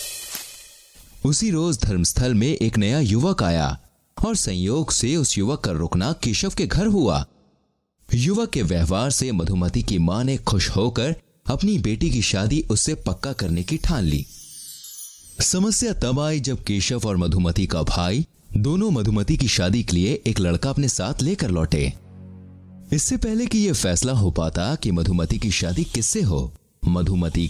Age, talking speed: 30-49, 160 wpm